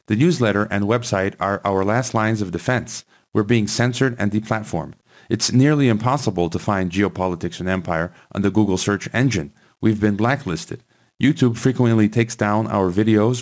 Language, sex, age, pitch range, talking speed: English, male, 40-59, 95-120 Hz, 165 wpm